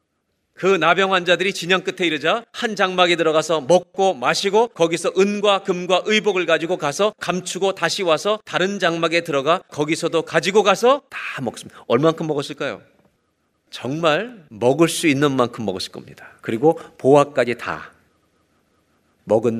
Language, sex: Korean, male